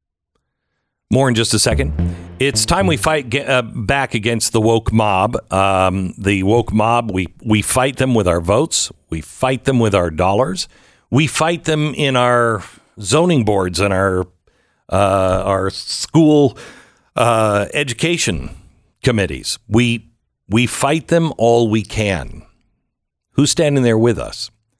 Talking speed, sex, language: 145 wpm, male, English